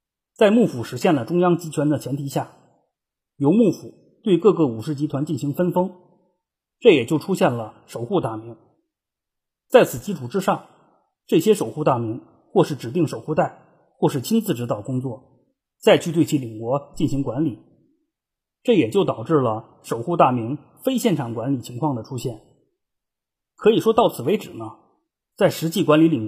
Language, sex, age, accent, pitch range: Chinese, male, 30-49, native, 120-180 Hz